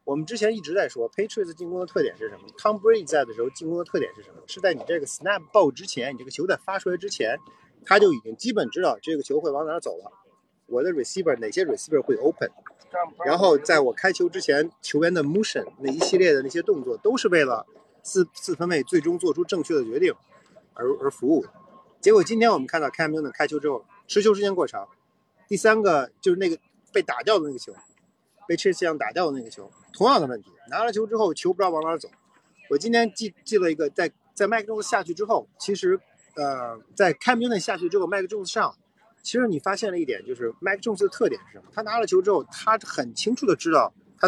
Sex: male